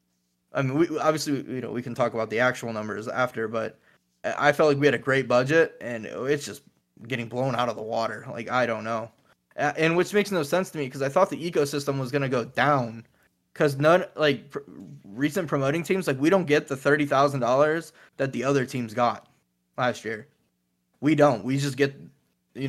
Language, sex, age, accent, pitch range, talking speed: English, male, 20-39, American, 115-145 Hz, 205 wpm